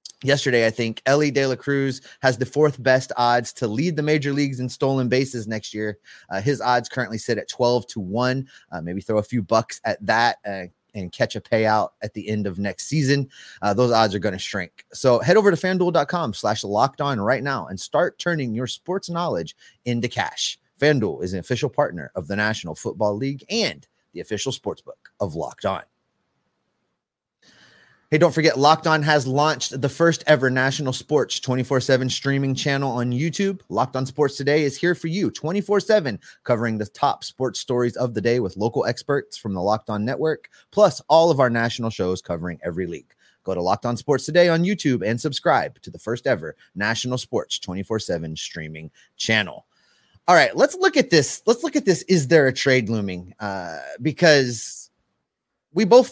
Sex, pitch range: male, 110-155 Hz